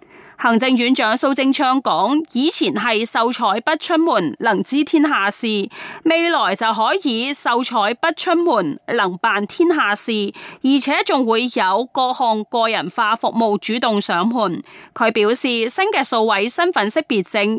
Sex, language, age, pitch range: female, Chinese, 30-49, 215-290 Hz